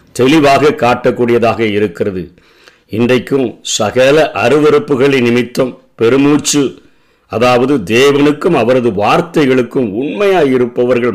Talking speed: 75 wpm